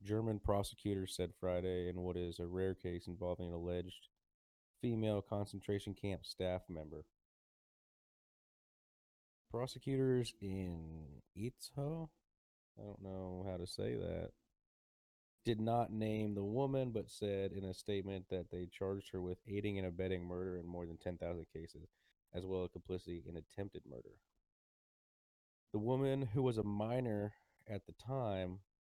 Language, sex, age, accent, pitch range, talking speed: English, male, 30-49, American, 85-100 Hz, 140 wpm